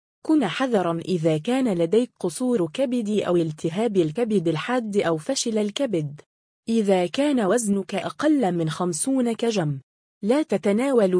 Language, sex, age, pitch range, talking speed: Arabic, female, 20-39, 170-235 Hz, 130 wpm